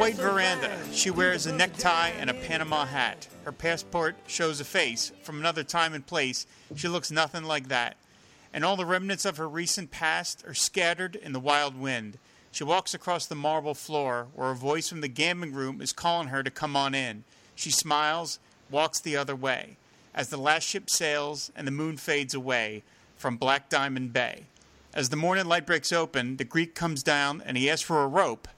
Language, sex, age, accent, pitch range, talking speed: English, male, 40-59, American, 135-165 Hz, 200 wpm